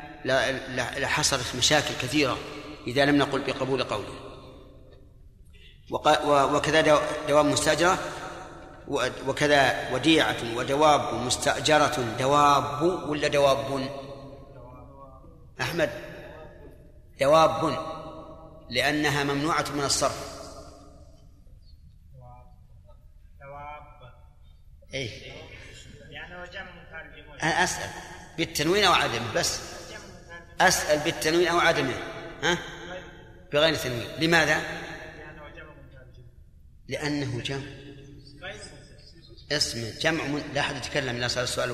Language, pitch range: Arabic, 125-160 Hz